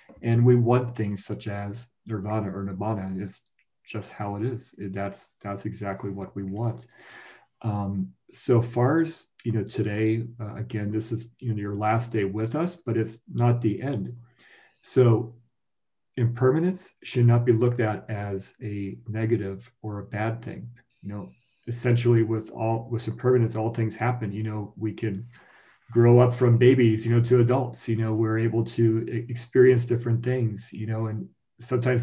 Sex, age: male, 40-59